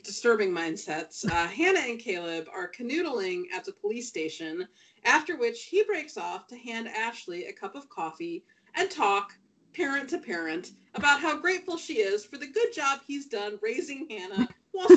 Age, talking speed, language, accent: 30-49, 170 wpm, English, American